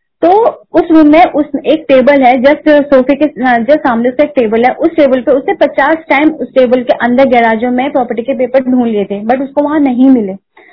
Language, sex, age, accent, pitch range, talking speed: Hindi, female, 20-39, native, 250-295 Hz, 225 wpm